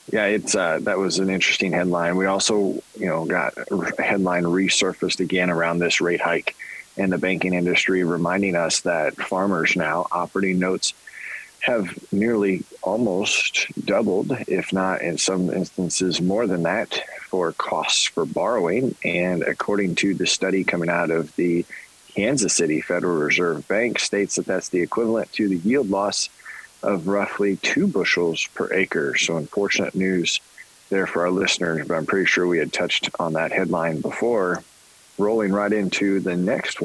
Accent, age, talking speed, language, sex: American, 30-49, 165 wpm, English, male